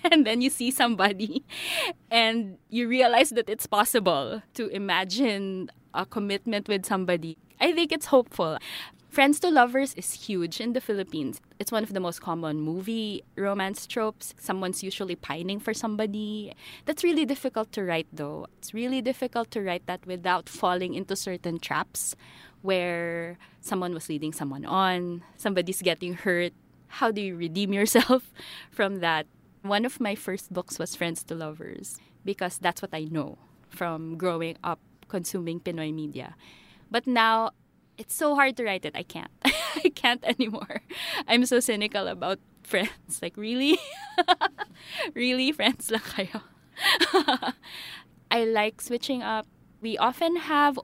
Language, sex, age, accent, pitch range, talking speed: English, female, 20-39, Filipino, 180-240 Hz, 150 wpm